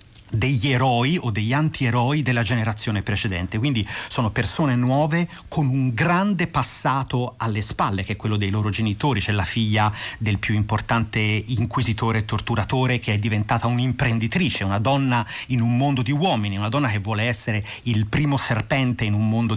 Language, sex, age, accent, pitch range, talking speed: Italian, male, 30-49, native, 110-135 Hz, 170 wpm